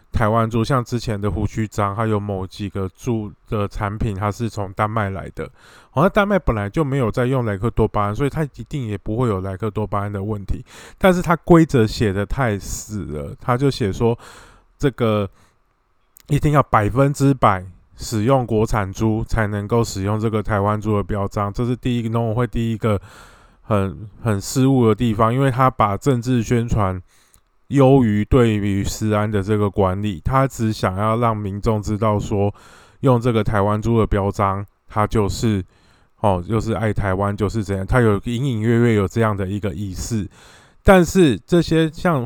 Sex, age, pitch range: male, 20-39, 105-125 Hz